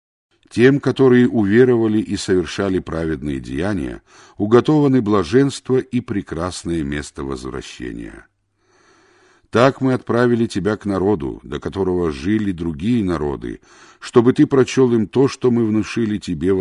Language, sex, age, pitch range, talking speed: Russian, male, 60-79, 85-120 Hz, 125 wpm